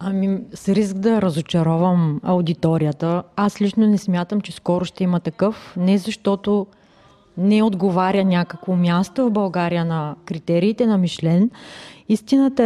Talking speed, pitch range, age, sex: 135 wpm, 180-225 Hz, 30-49, female